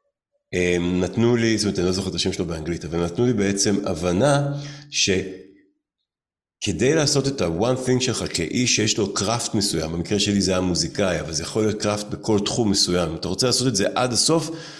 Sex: male